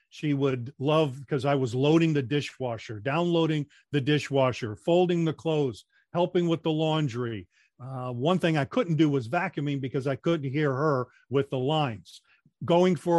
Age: 40-59